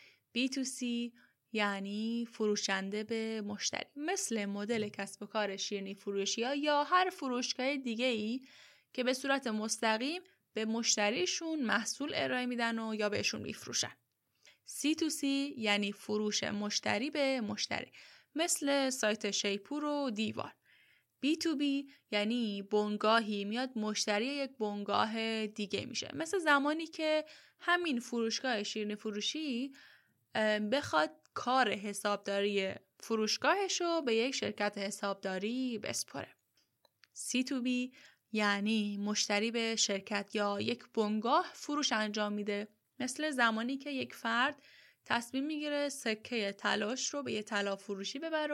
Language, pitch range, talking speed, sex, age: Persian, 210-275 Hz, 115 wpm, female, 10-29